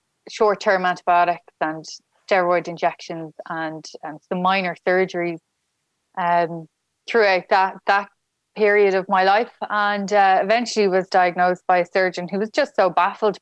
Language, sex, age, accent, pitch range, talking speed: English, female, 20-39, Irish, 180-210 Hz, 140 wpm